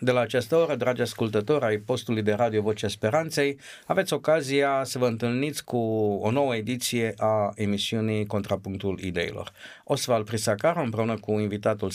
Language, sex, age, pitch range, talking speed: Romanian, male, 50-69, 110-155 Hz, 150 wpm